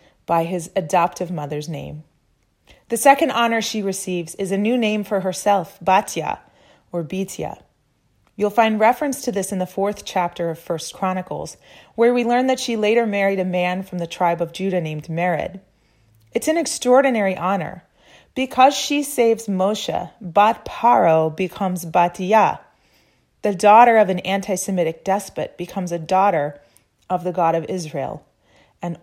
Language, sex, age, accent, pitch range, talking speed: English, female, 30-49, American, 175-220 Hz, 155 wpm